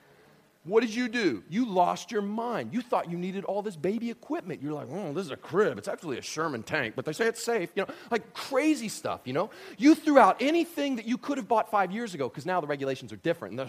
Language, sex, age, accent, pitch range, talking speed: English, male, 30-49, American, 205-275 Hz, 255 wpm